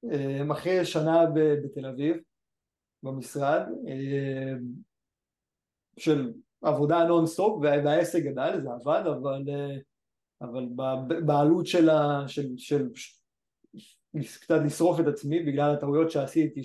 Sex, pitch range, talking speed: male, 140-165 Hz, 95 wpm